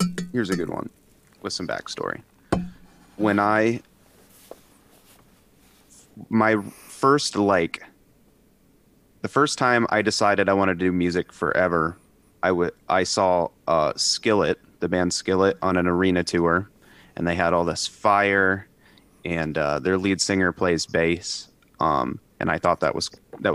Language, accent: English, American